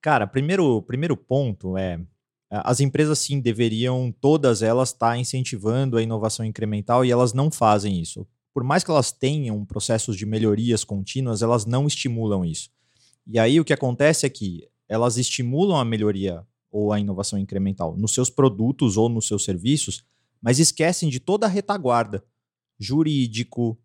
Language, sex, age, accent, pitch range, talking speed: Portuguese, male, 30-49, Brazilian, 105-135 Hz, 160 wpm